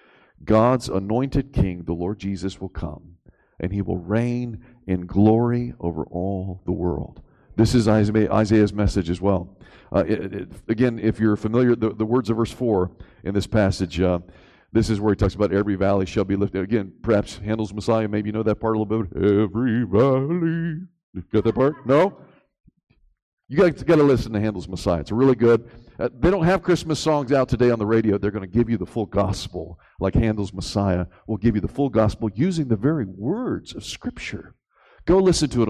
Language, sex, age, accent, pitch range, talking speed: English, male, 50-69, American, 95-125 Hz, 195 wpm